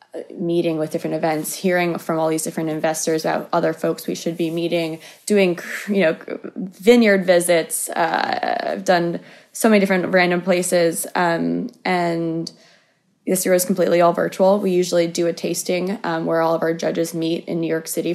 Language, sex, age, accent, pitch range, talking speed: English, female, 20-39, American, 160-175 Hz, 180 wpm